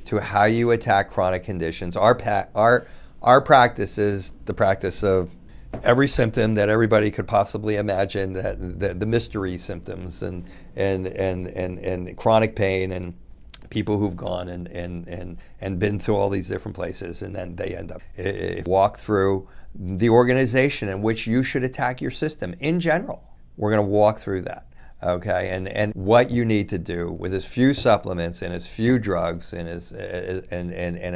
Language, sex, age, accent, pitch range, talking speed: English, male, 50-69, American, 90-105 Hz, 175 wpm